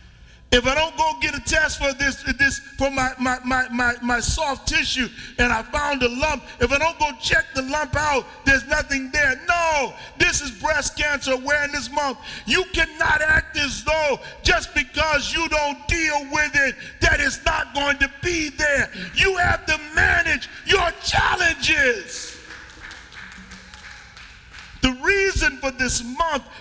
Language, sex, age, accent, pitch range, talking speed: English, male, 40-59, American, 275-315 Hz, 160 wpm